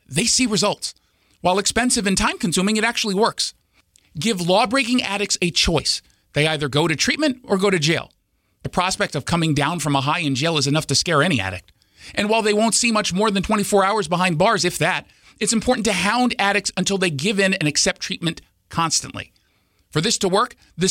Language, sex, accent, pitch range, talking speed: English, male, American, 155-215 Hz, 205 wpm